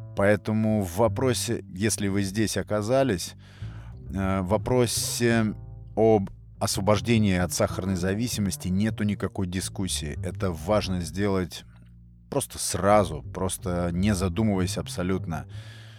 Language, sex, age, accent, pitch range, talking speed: Russian, male, 30-49, native, 90-105 Hz, 100 wpm